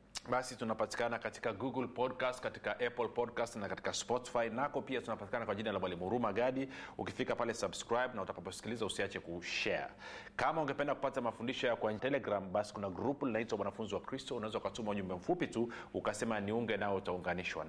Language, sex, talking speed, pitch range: Swahili, male, 165 wpm, 105-120 Hz